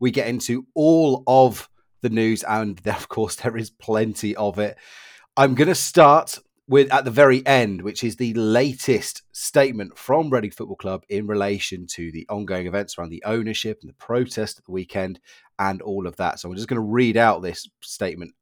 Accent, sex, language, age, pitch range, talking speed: British, male, English, 30-49, 100-130 Hz, 200 wpm